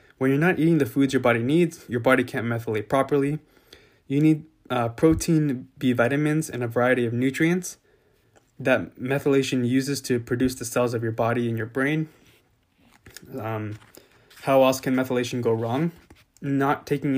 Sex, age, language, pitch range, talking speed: male, 20-39, English, 120-140 Hz, 165 wpm